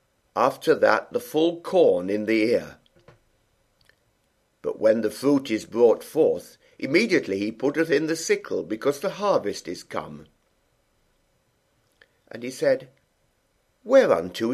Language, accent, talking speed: English, British, 125 wpm